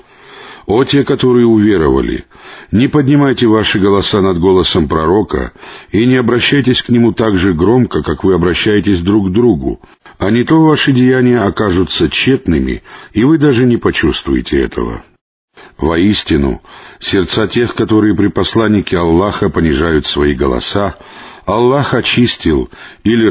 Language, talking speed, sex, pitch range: Russian, 130 wpm, male, 95-125 Hz